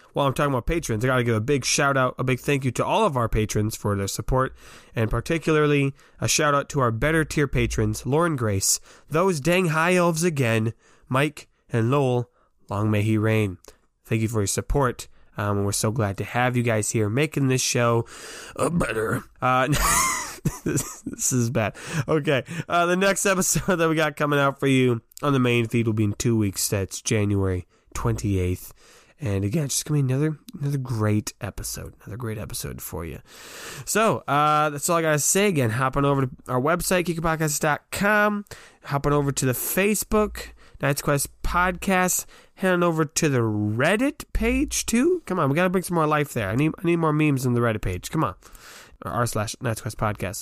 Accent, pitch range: American, 115-155 Hz